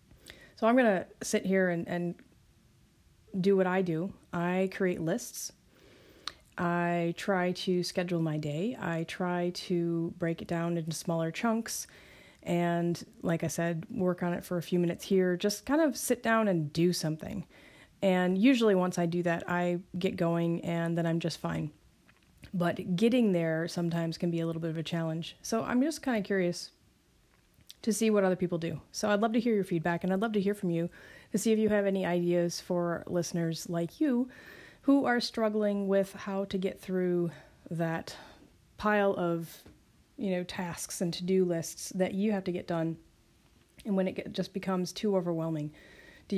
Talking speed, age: 185 wpm, 30-49